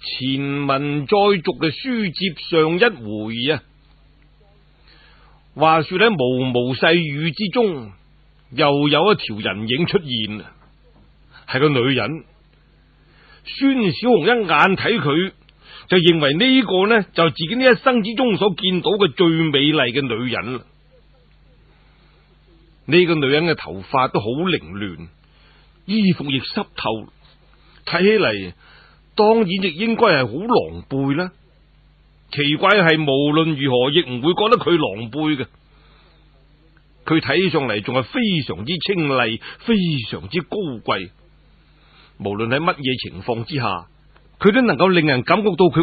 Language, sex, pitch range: Chinese, male, 130-185 Hz